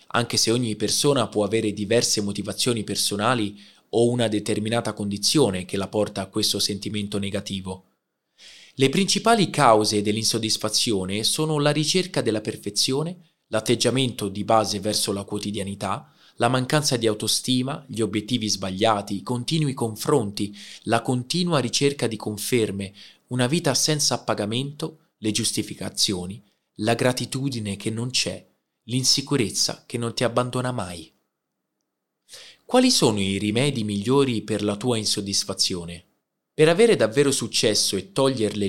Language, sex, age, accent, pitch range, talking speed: Italian, male, 20-39, native, 105-135 Hz, 125 wpm